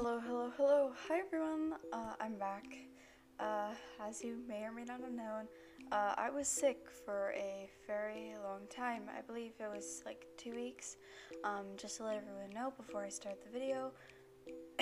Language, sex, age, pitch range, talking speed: English, female, 10-29, 200-255 Hz, 180 wpm